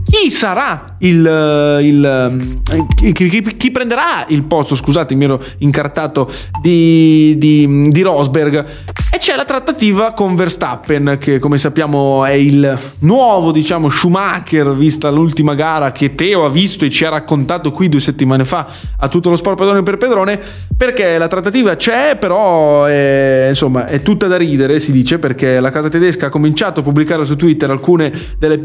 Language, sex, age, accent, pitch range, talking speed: English, male, 20-39, Italian, 135-165 Hz, 170 wpm